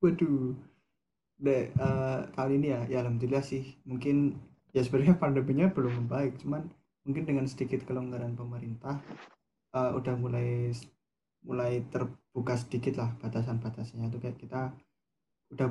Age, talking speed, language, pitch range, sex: 20-39, 125 wpm, Indonesian, 120-135 Hz, male